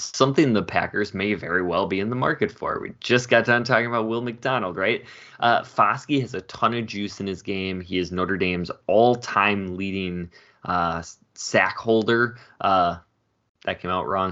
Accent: American